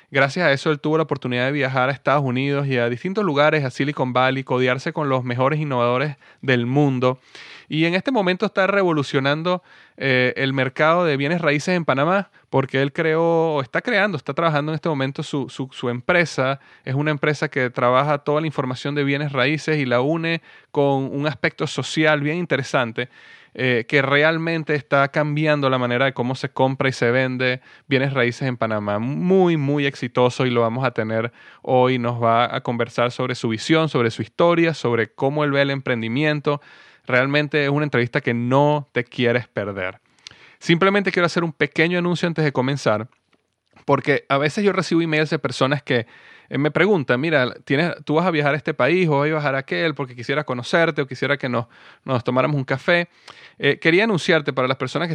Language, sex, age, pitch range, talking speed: Spanish, male, 30-49, 130-155 Hz, 195 wpm